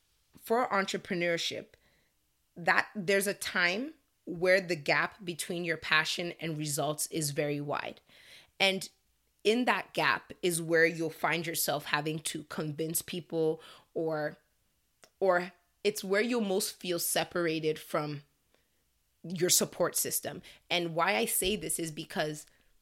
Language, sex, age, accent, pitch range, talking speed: English, female, 20-39, American, 160-195 Hz, 130 wpm